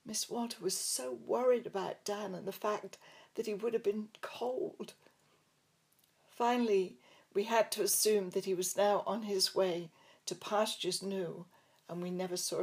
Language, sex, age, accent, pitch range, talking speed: English, female, 60-79, British, 195-305 Hz, 165 wpm